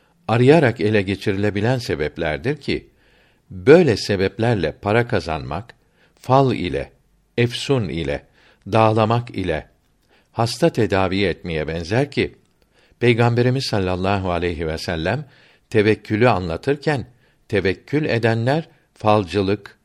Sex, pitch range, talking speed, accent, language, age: male, 95-130 Hz, 90 wpm, native, Turkish, 60-79